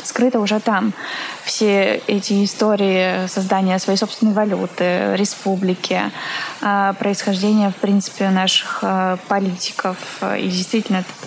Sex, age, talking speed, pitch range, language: female, 20-39, 105 wpm, 190-215 Hz, Russian